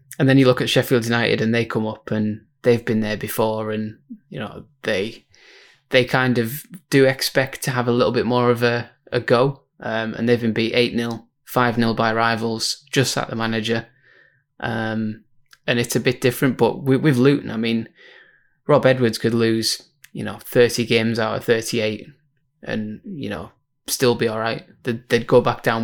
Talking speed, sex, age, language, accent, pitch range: 195 wpm, male, 20-39, English, British, 115-130 Hz